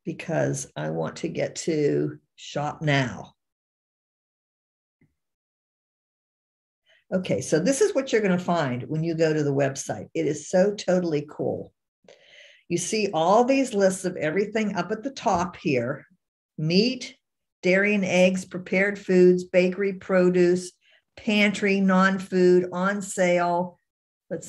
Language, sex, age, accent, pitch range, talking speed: English, female, 50-69, American, 160-195 Hz, 125 wpm